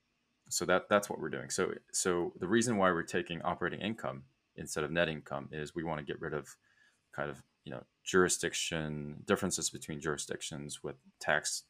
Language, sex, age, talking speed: English, male, 20-39, 185 wpm